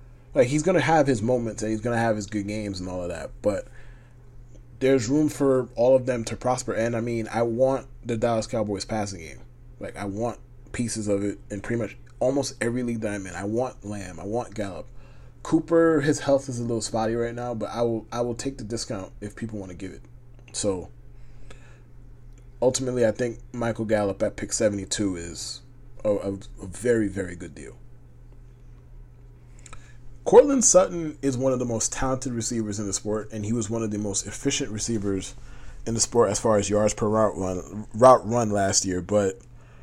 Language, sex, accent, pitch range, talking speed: English, male, American, 105-125 Hz, 200 wpm